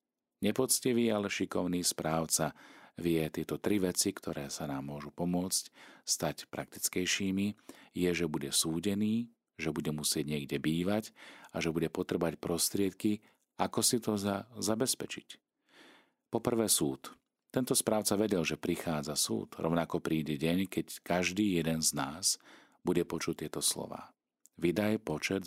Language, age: Slovak, 40-59